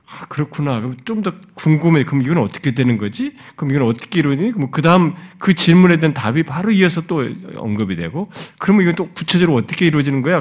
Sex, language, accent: male, Korean, native